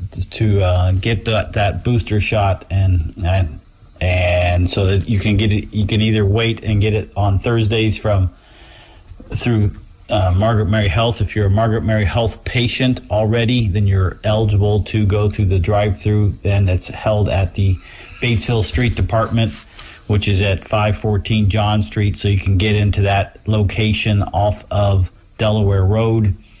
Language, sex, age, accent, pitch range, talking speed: English, male, 40-59, American, 95-110 Hz, 160 wpm